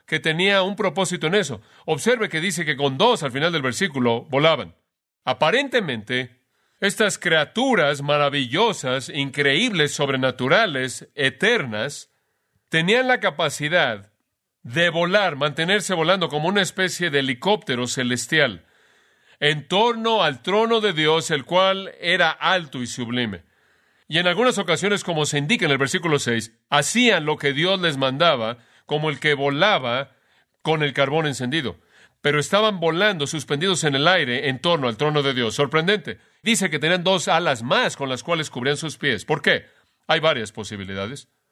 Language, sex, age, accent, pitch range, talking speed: Spanish, male, 40-59, Mexican, 130-175 Hz, 150 wpm